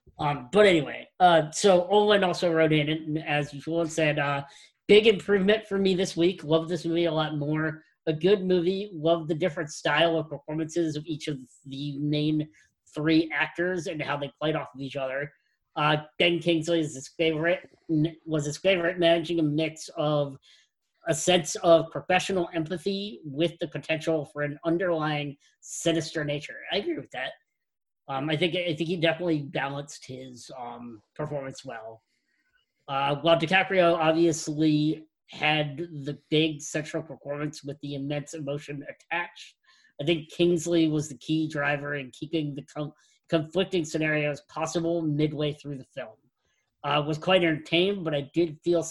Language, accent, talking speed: English, American, 160 wpm